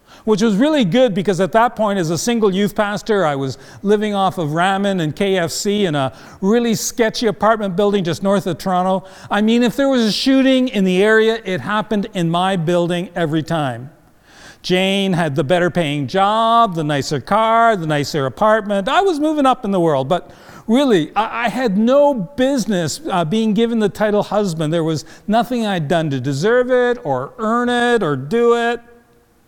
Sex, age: male, 50-69